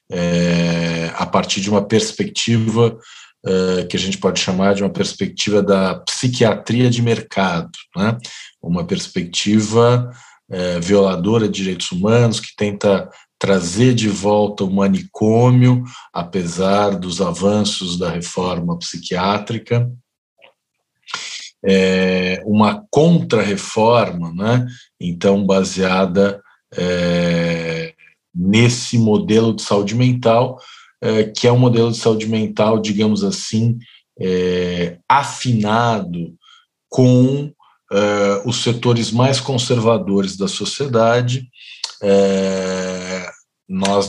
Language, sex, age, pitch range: Portuguese, male, 50-69, 95-115 Hz